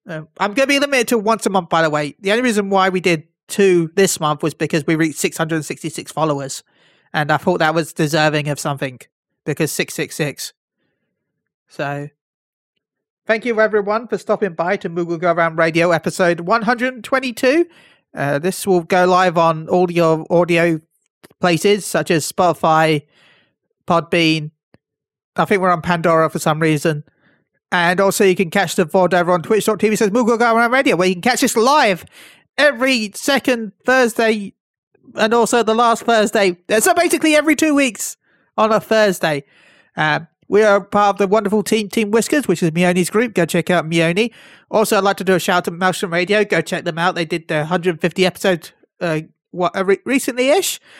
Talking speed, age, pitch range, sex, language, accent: 175 wpm, 30-49, 165-220 Hz, male, English, British